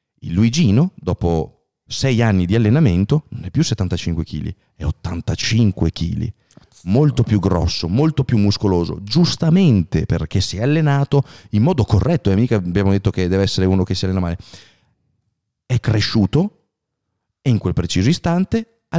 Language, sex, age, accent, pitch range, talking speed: Italian, male, 40-59, native, 95-135 Hz, 160 wpm